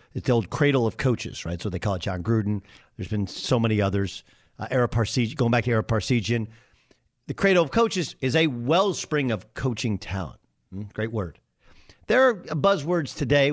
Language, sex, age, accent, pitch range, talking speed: English, male, 50-69, American, 105-145 Hz, 185 wpm